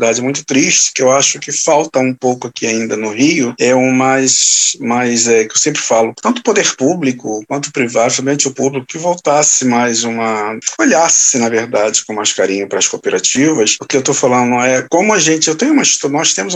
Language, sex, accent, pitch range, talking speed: Portuguese, male, Brazilian, 130-175 Hz, 220 wpm